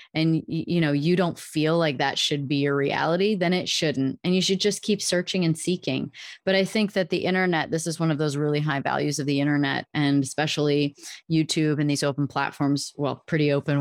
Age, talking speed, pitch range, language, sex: 30-49, 215 wpm, 150-185 Hz, English, female